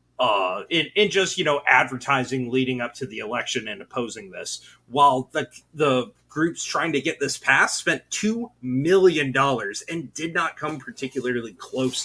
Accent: American